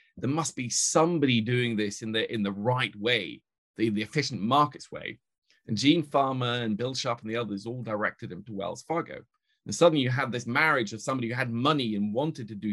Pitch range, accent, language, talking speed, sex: 105-125 Hz, British, English, 220 wpm, male